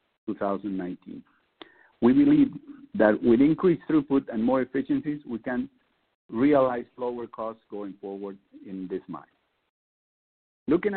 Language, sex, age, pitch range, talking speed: English, male, 50-69, 110-145 Hz, 115 wpm